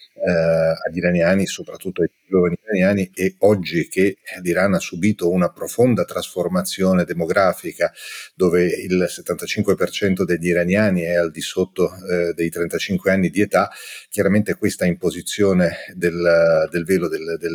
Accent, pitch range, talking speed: native, 85-100 Hz, 135 wpm